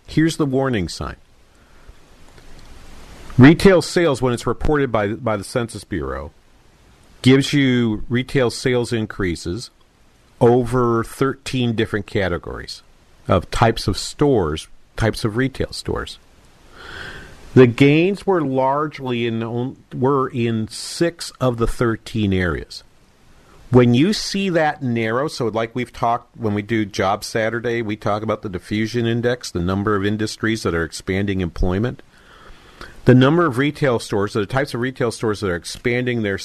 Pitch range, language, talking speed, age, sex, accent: 105-130 Hz, English, 140 wpm, 50-69, male, American